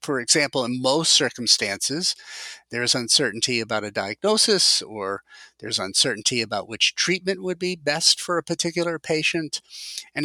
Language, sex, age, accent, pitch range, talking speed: English, male, 50-69, American, 125-165 Hz, 145 wpm